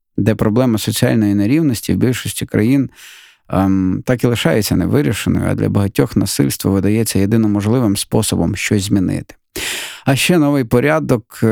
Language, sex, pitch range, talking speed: Ukrainian, male, 100-125 Hz, 135 wpm